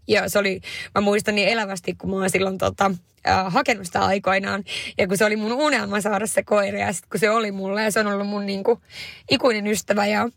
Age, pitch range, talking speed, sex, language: 20-39, 195-220 Hz, 230 wpm, female, Finnish